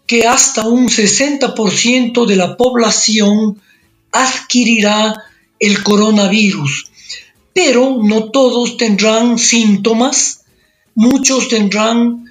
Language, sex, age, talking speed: Spanish, male, 50-69, 85 wpm